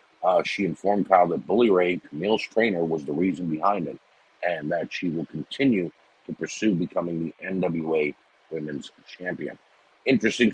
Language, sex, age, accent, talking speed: English, male, 50-69, American, 155 wpm